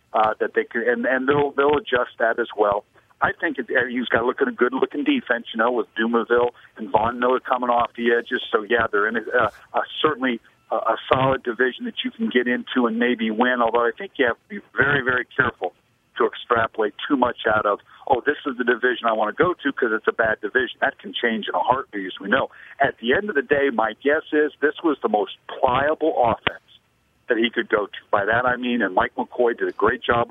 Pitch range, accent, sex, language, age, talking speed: 120-165 Hz, American, male, English, 50-69, 250 wpm